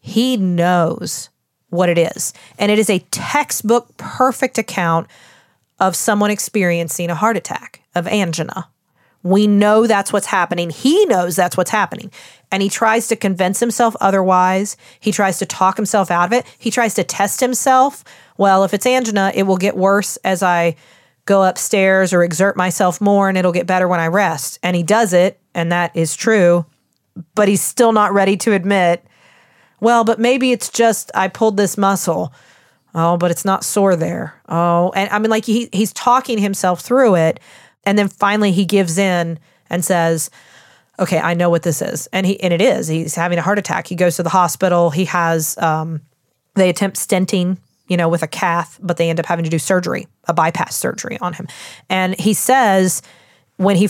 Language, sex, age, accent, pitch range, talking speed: English, female, 40-59, American, 175-205 Hz, 190 wpm